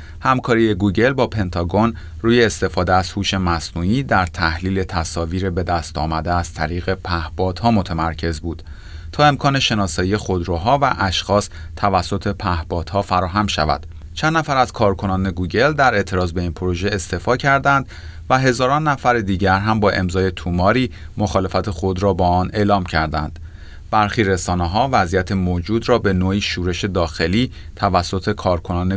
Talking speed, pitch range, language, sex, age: 145 wpm, 85-105 Hz, Persian, male, 30-49